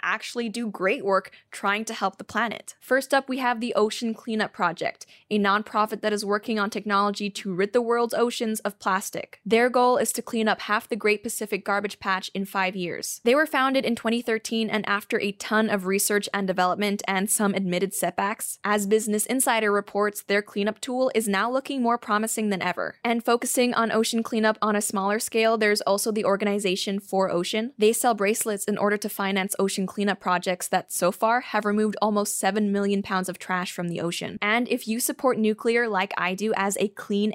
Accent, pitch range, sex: American, 200-230 Hz, female